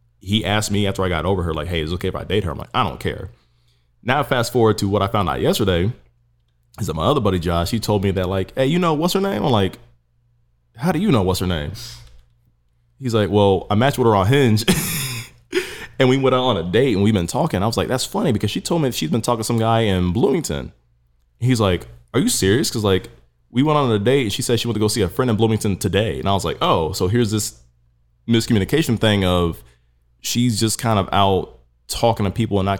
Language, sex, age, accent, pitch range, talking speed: English, male, 20-39, American, 85-115 Hz, 255 wpm